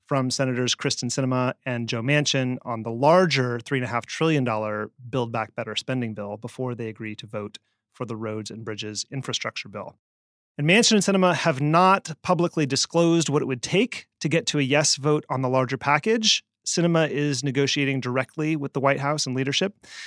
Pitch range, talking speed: 120-150 Hz, 180 wpm